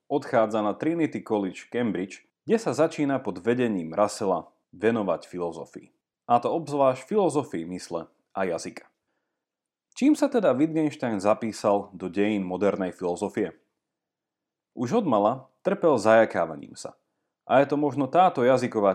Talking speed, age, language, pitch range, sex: 130 wpm, 30-49, Slovak, 100-150 Hz, male